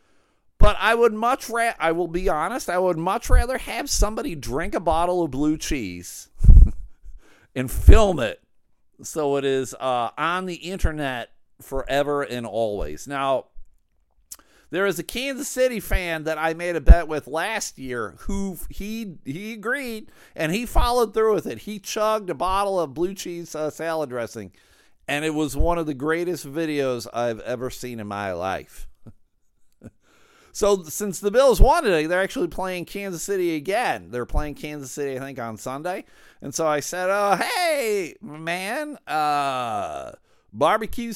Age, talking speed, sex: 50-69, 165 wpm, male